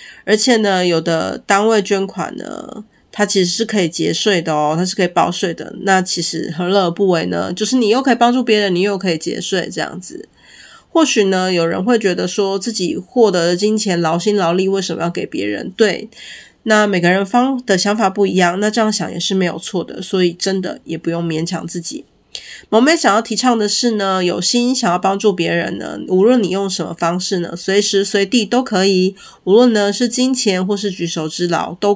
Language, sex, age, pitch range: Chinese, female, 30-49, 175-220 Hz